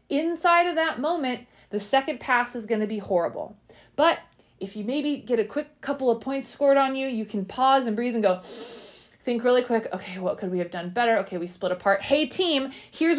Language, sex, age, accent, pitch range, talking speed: English, female, 20-39, American, 195-270 Hz, 225 wpm